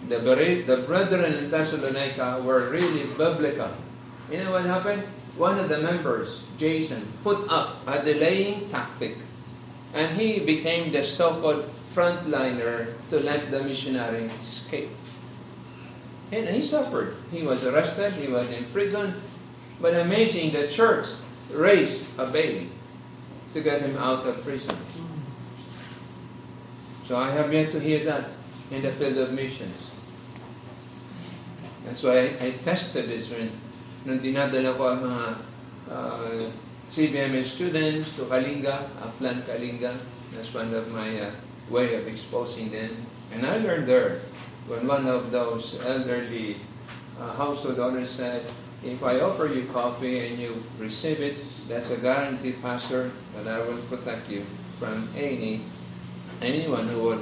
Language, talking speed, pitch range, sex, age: Filipino, 135 wpm, 120-150 Hz, male, 50-69